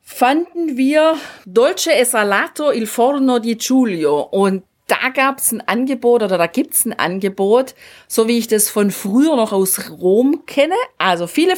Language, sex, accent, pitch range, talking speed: German, female, German, 205-270 Hz, 170 wpm